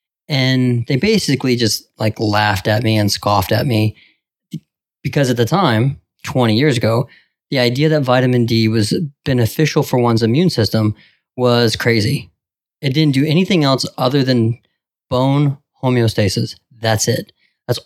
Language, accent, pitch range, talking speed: English, American, 115-145 Hz, 150 wpm